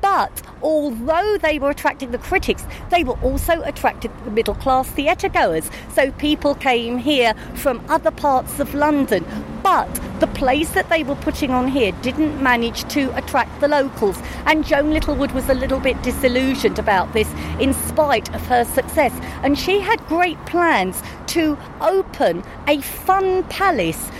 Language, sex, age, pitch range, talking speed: English, female, 40-59, 255-320 Hz, 160 wpm